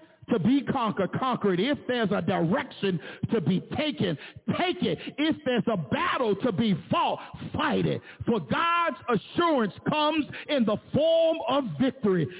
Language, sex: English, male